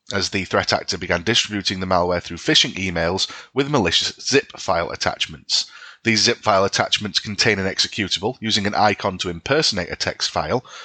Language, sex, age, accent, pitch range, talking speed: English, male, 30-49, British, 95-115 Hz, 170 wpm